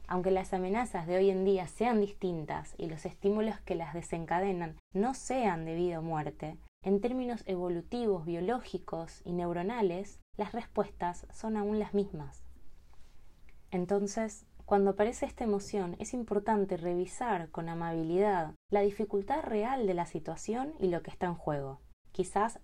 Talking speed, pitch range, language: 150 wpm, 165-205 Hz, Spanish